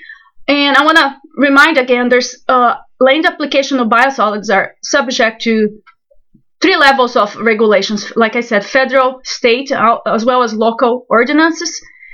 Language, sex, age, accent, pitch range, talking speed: English, female, 30-49, Brazilian, 225-275 Hz, 145 wpm